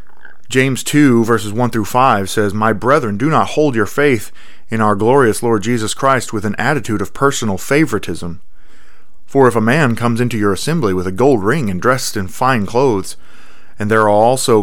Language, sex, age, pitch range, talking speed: English, male, 30-49, 105-125 Hz, 190 wpm